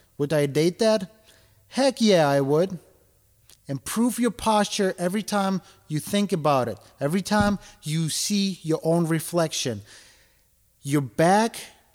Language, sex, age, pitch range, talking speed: English, male, 30-49, 155-220 Hz, 130 wpm